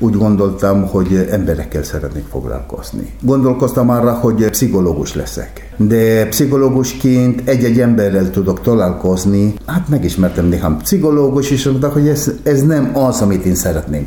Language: Hungarian